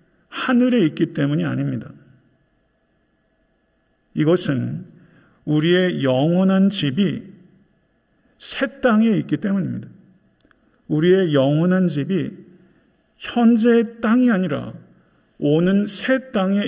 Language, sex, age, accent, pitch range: Korean, male, 50-69, native, 145-185 Hz